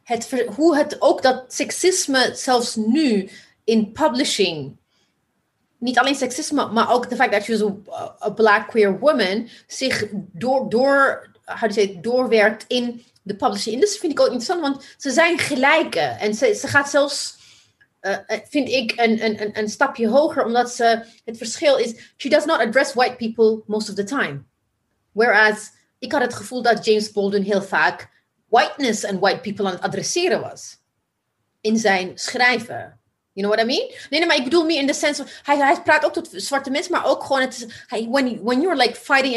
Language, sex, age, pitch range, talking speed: Dutch, female, 30-49, 220-285 Hz, 185 wpm